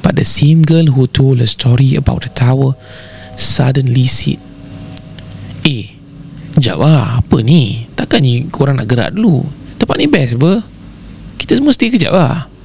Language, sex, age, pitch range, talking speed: Malay, male, 20-39, 110-155 Hz, 155 wpm